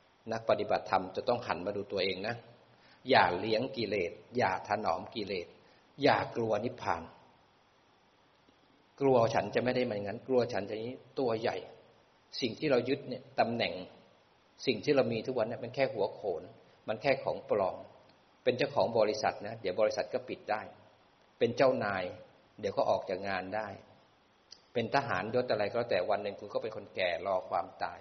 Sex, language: male, Thai